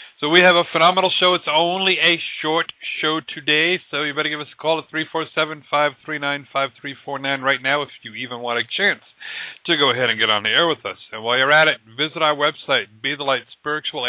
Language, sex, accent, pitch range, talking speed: English, male, American, 120-155 Hz, 225 wpm